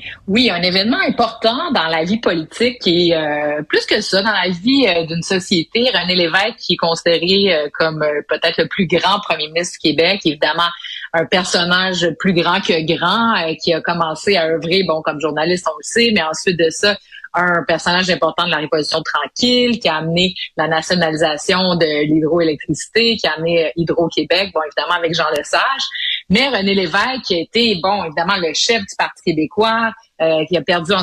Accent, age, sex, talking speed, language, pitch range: Canadian, 30-49, female, 190 wpm, French, 165-200 Hz